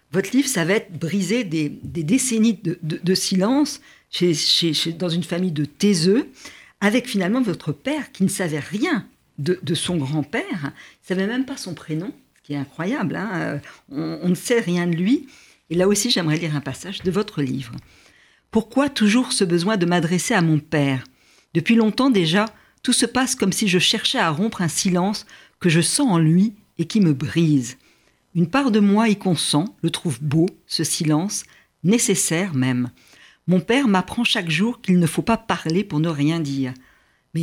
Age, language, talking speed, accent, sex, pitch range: 50-69, French, 195 wpm, French, female, 160-215 Hz